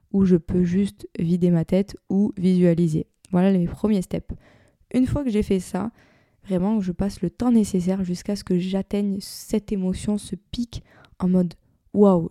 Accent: French